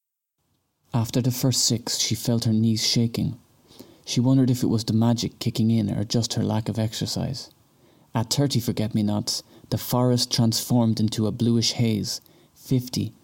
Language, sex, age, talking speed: English, male, 30-49, 170 wpm